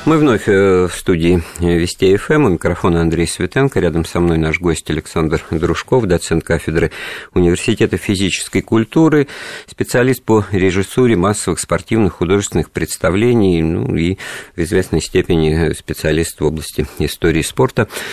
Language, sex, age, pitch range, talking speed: Russian, male, 50-69, 85-110 Hz, 125 wpm